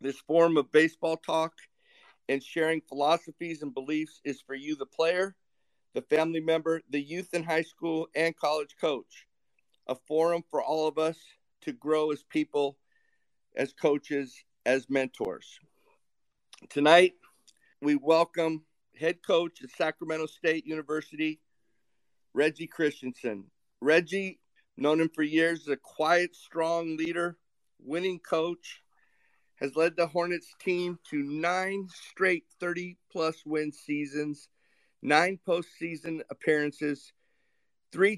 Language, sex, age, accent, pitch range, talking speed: English, male, 50-69, American, 150-170 Hz, 125 wpm